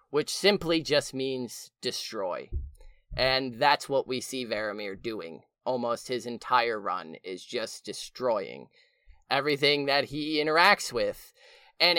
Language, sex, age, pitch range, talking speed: English, male, 20-39, 125-165 Hz, 125 wpm